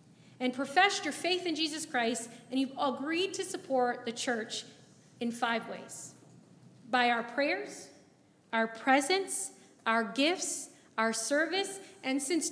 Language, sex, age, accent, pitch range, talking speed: English, female, 30-49, American, 235-325 Hz, 135 wpm